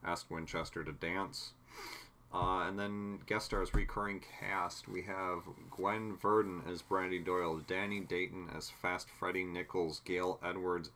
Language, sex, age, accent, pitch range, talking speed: English, male, 40-59, American, 90-115 Hz, 140 wpm